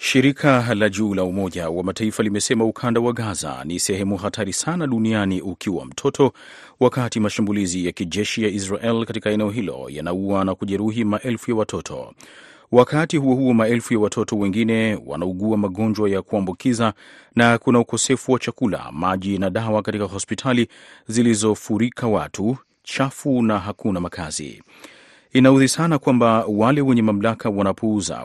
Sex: male